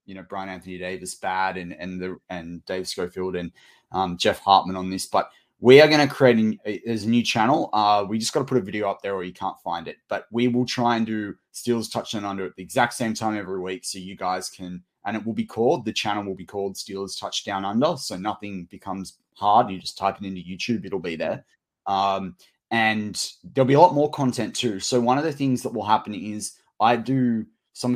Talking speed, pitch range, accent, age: 245 wpm, 95-115 Hz, Australian, 20-39